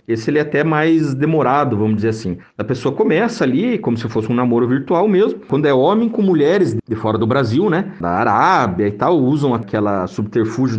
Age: 40-59